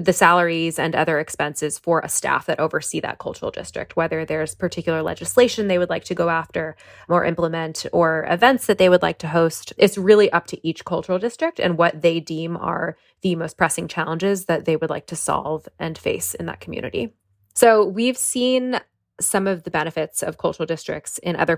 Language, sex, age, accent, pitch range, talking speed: English, female, 20-39, American, 160-195 Hz, 200 wpm